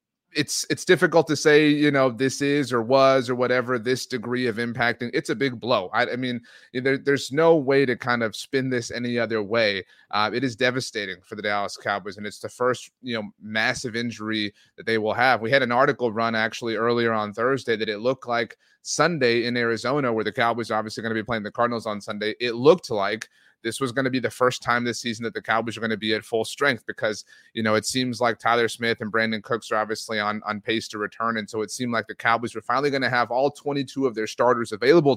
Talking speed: 245 wpm